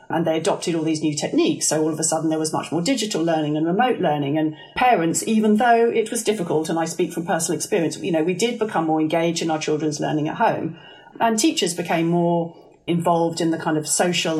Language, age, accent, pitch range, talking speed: English, 40-59, British, 155-185 Hz, 240 wpm